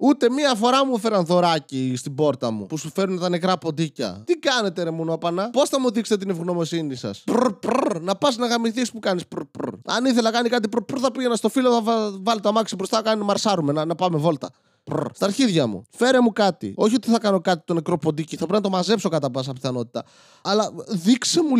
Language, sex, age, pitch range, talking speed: Greek, male, 20-39, 150-220 Hz, 220 wpm